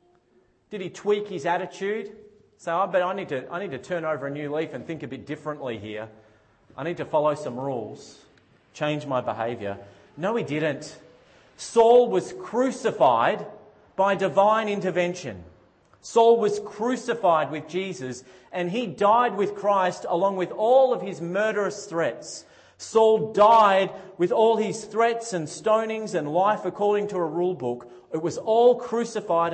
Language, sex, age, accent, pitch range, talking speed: English, male, 40-59, Australian, 155-210 Hz, 160 wpm